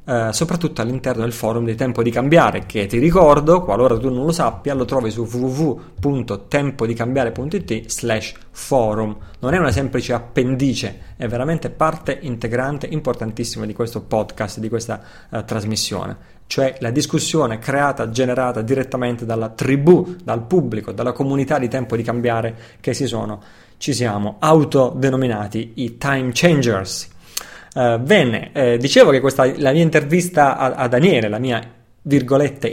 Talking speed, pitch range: 145 wpm, 115-145 Hz